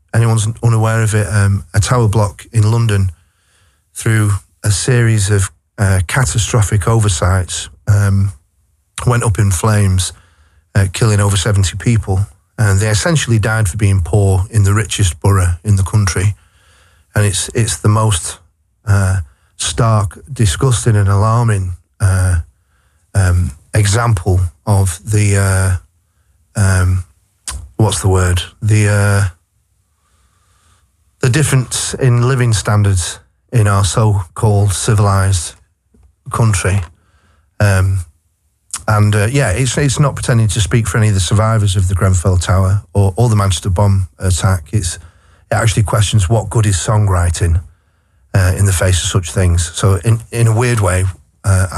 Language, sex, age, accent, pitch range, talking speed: Dutch, male, 40-59, British, 90-110 Hz, 140 wpm